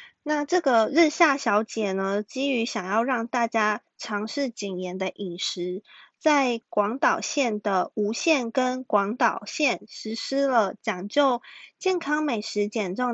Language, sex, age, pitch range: Chinese, female, 20-39, 210-265 Hz